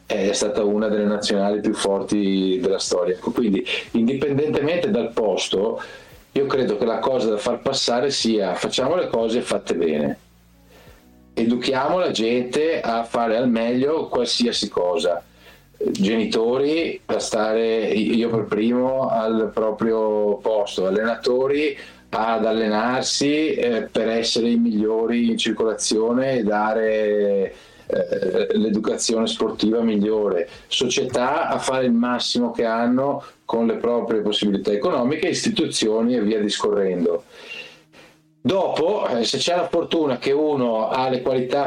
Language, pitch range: Italian, 110-145 Hz